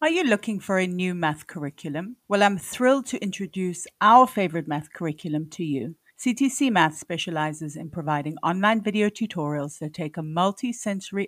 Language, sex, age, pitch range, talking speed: English, female, 50-69, 160-210 Hz, 165 wpm